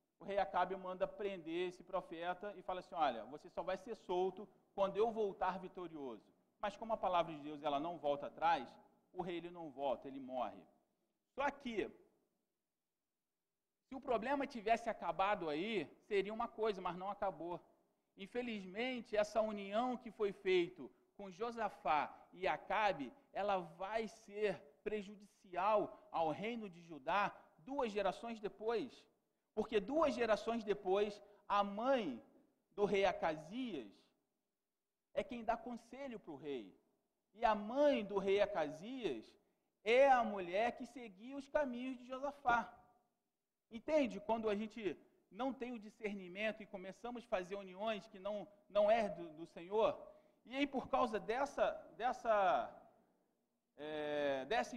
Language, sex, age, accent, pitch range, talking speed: Portuguese, male, 40-59, Brazilian, 190-245 Hz, 145 wpm